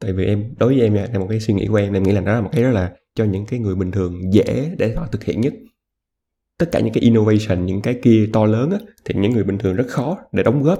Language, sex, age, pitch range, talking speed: Vietnamese, male, 20-39, 100-125 Hz, 305 wpm